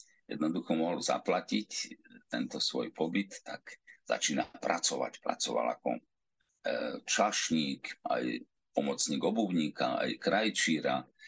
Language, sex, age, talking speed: Slovak, male, 50-69, 90 wpm